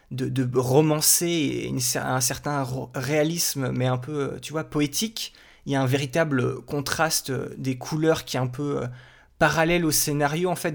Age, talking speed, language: 20-39, 165 wpm, French